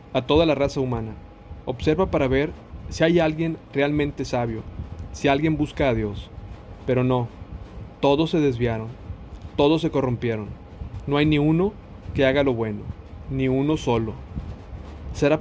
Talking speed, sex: 150 wpm, male